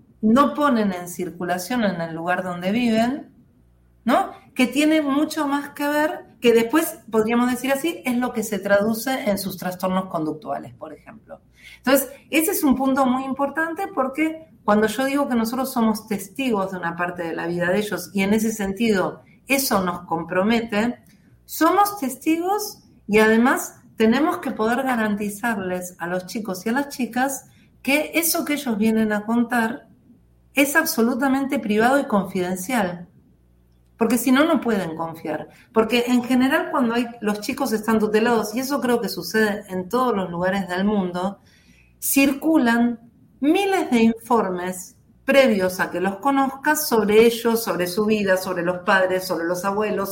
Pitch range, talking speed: 190-270 Hz, 160 wpm